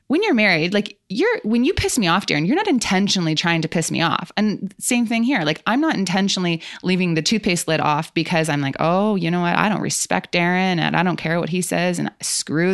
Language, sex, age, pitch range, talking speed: English, female, 20-39, 155-190 Hz, 245 wpm